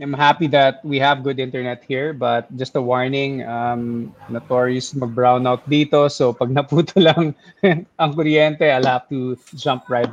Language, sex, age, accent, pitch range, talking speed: English, male, 20-39, Filipino, 125-150 Hz, 165 wpm